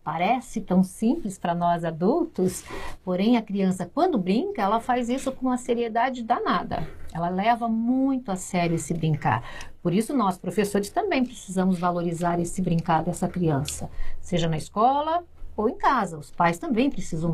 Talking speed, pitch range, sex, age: 160 wpm, 175-255 Hz, female, 50-69